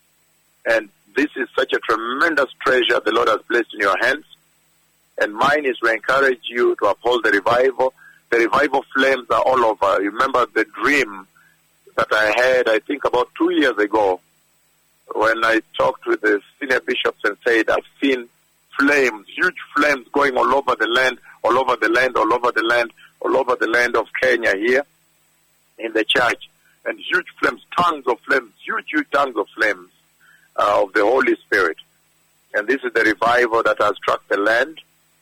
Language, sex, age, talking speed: English, male, 50-69, 180 wpm